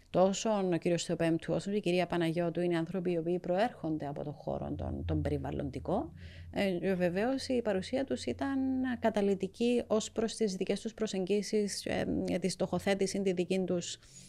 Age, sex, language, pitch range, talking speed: 30-49, female, Greek, 155-185 Hz, 155 wpm